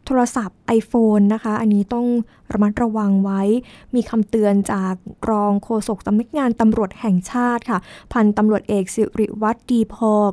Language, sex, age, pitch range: Thai, female, 20-39, 205-245 Hz